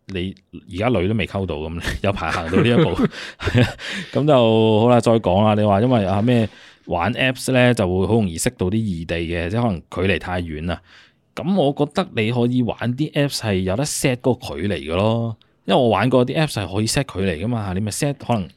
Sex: male